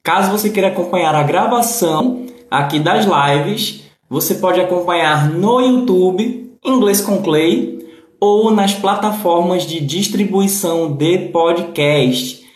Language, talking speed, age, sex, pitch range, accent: Portuguese, 115 wpm, 20-39, male, 150-205 Hz, Brazilian